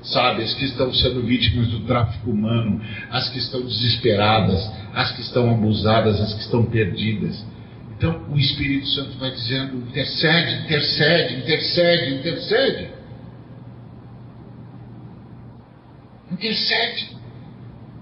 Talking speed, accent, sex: 105 wpm, Brazilian, male